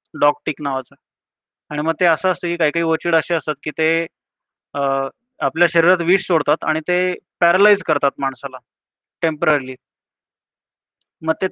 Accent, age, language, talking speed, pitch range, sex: native, 30-49, Marathi, 140 wpm, 150-175 Hz, male